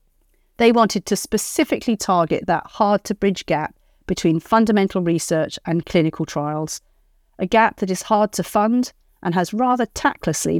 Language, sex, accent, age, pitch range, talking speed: English, female, British, 40-59, 165-210 Hz, 140 wpm